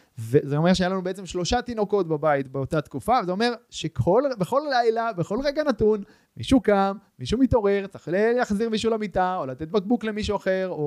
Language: Hebrew